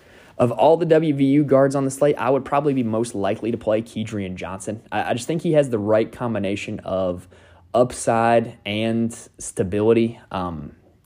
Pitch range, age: 95-125 Hz, 20-39